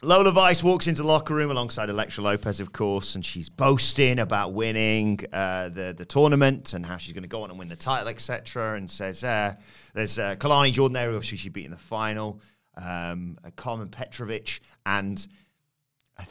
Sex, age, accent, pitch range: male, 30-49, British, 100-140 Hz